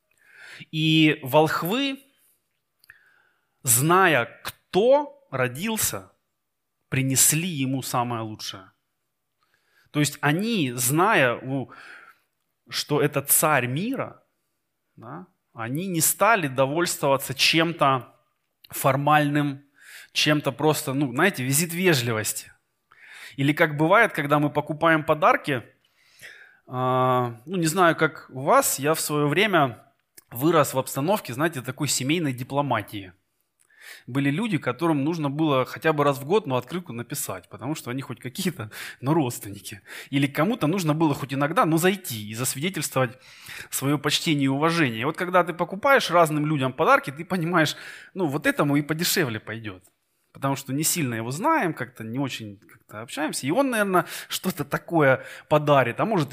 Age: 20-39